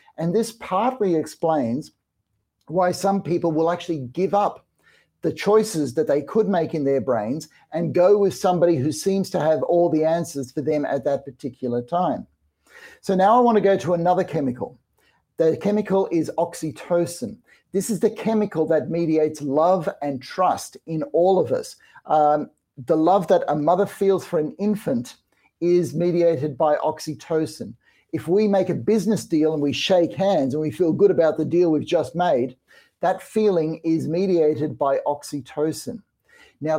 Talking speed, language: 170 wpm, English